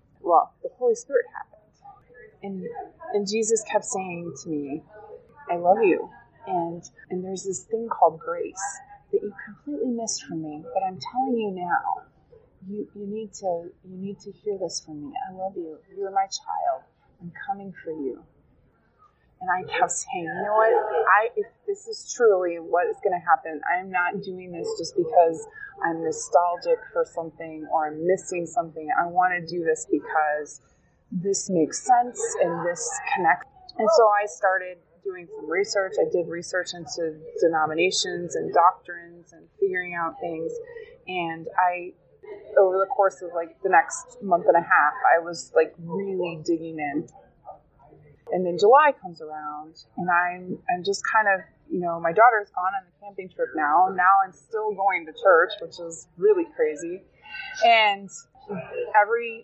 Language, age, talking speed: English, 20-39, 170 wpm